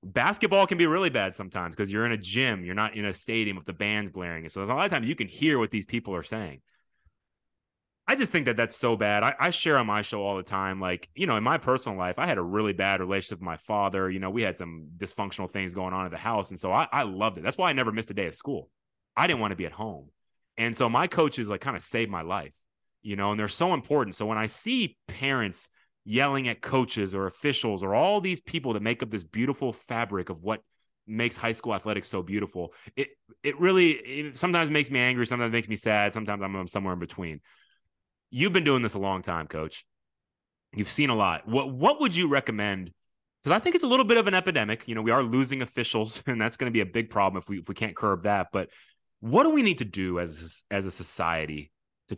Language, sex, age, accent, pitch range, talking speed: English, male, 30-49, American, 95-130 Hz, 255 wpm